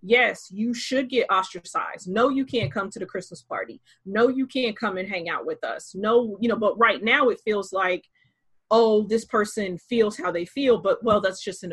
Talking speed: 220 wpm